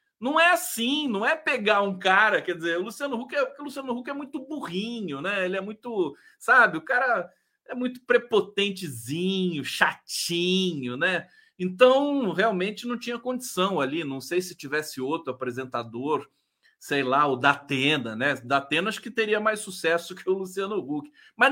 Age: 40-59